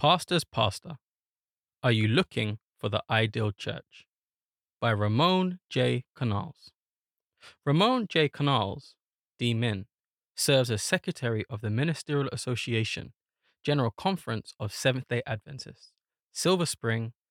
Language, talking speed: English, 110 wpm